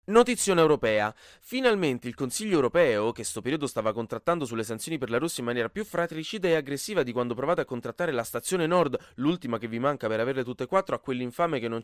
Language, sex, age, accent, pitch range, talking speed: Italian, male, 20-39, native, 110-160 Hz, 225 wpm